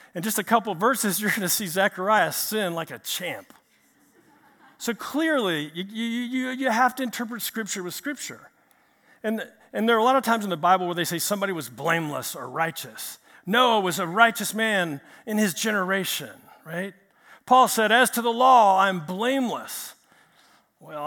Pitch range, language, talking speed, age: 195-245 Hz, English, 175 wpm, 50-69